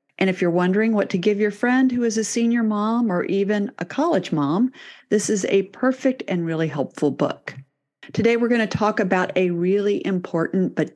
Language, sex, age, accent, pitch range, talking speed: English, female, 50-69, American, 170-220 Hz, 205 wpm